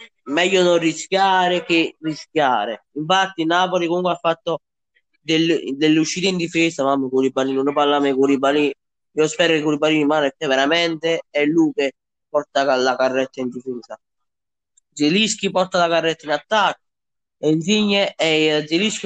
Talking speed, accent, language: 135 wpm, native, Italian